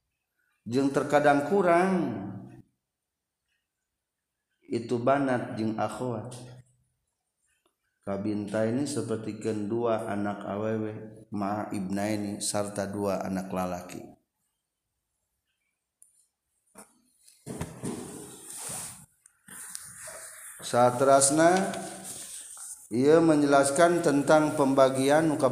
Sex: male